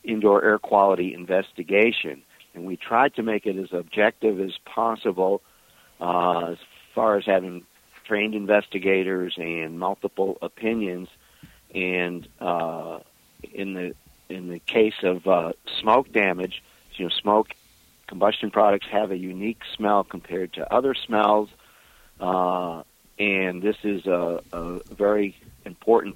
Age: 50-69